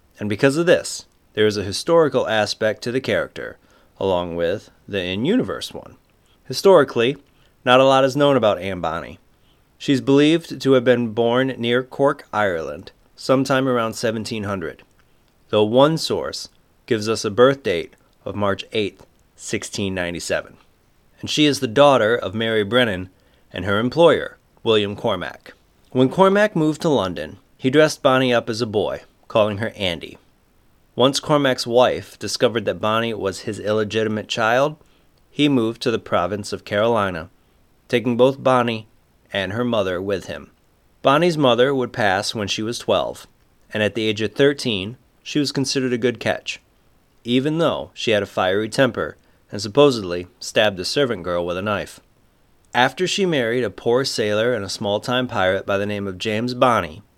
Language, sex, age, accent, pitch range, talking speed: English, male, 30-49, American, 105-130 Hz, 165 wpm